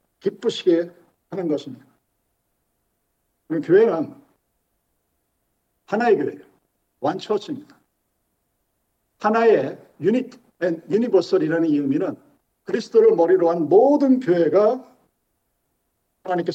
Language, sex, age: Korean, male, 50-69